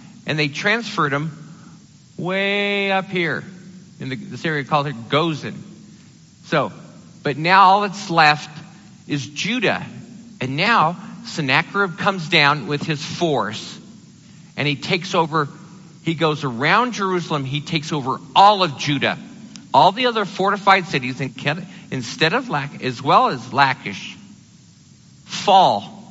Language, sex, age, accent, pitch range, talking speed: English, male, 50-69, American, 150-200 Hz, 135 wpm